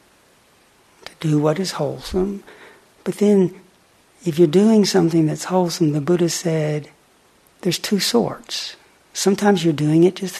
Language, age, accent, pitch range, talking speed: English, 60-79, American, 160-185 Hz, 135 wpm